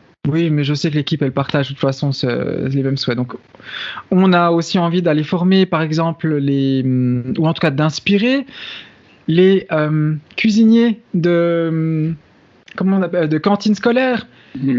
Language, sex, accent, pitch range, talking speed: French, male, French, 160-220 Hz, 155 wpm